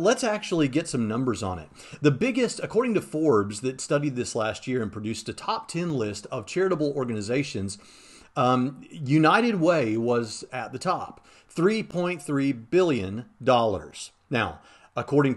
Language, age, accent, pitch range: English, 40-59, American, 115-155 Hz